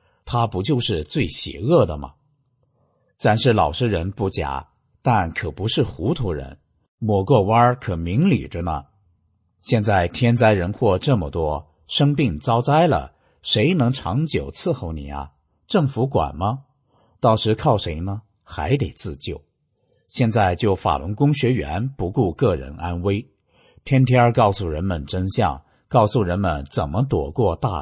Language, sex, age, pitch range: English, male, 50-69, 85-125 Hz